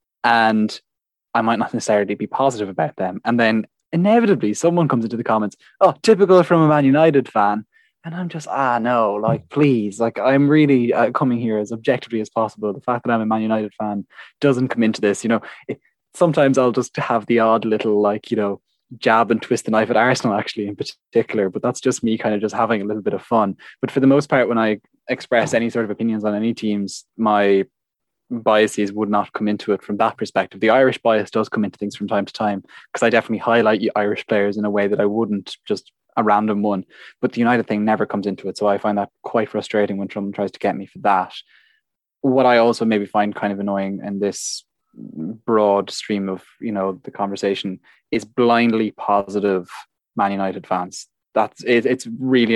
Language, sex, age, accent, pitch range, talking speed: English, male, 20-39, Irish, 100-120 Hz, 215 wpm